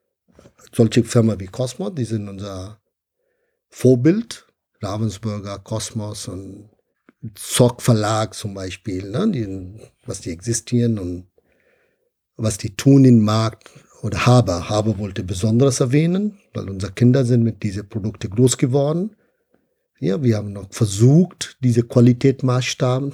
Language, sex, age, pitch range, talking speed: German, male, 50-69, 110-140 Hz, 125 wpm